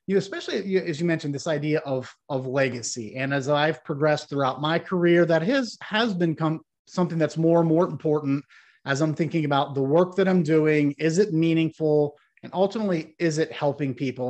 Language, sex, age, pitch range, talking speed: English, male, 30-49, 140-170 Hz, 190 wpm